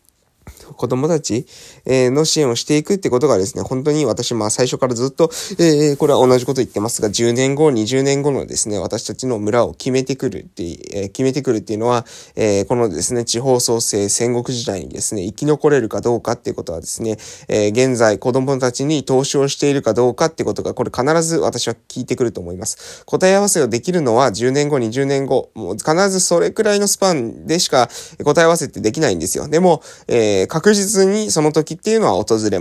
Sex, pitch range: male, 115-155 Hz